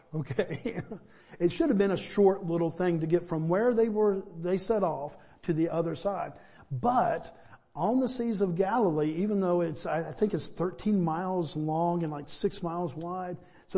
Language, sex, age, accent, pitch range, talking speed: English, male, 50-69, American, 160-195 Hz, 185 wpm